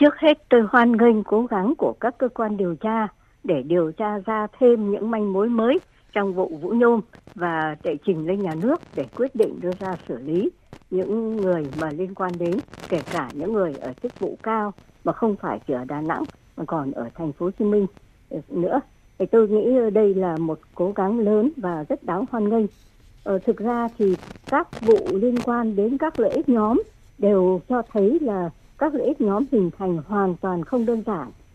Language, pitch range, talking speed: Vietnamese, 175-235 Hz, 210 wpm